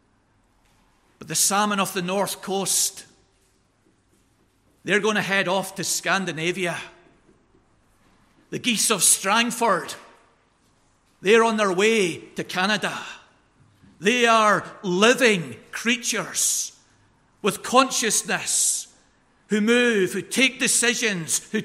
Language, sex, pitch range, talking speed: English, male, 180-230 Hz, 95 wpm